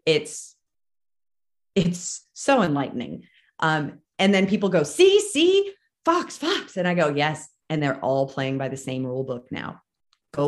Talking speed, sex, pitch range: 160 wpm, female, 140-180 Hz